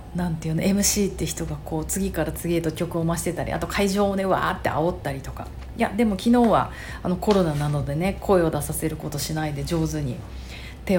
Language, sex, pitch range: Japanese, female, 155-195 Hz